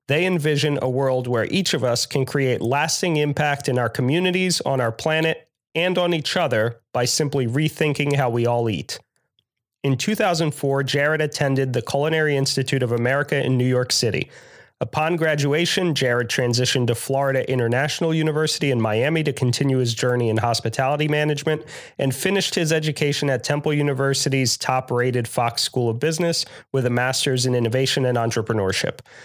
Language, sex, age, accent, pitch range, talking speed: English, male, 30-49, American, 125-160 Hz, 160 wpm